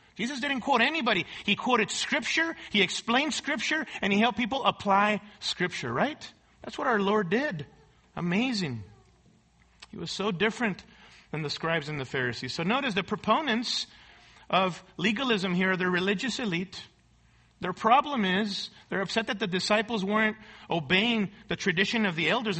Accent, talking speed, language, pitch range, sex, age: American, 155 wpm, English, 190-235 Hz, male, 40-59